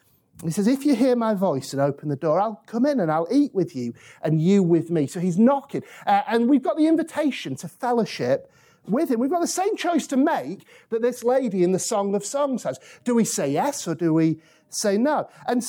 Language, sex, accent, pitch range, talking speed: English, male, British, 200-290 Hz, 235 wpm